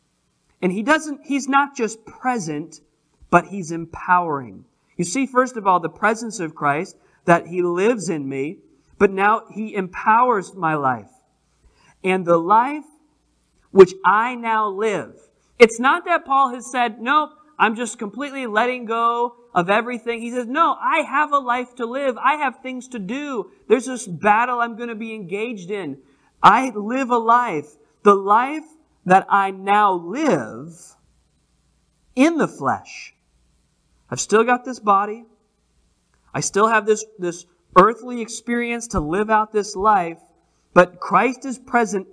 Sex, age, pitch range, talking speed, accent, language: male, 40-59, 155-240 Hz, 155 wpm, American, English